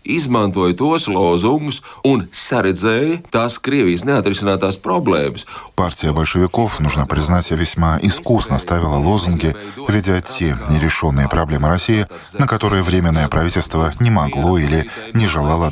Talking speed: 90 wpm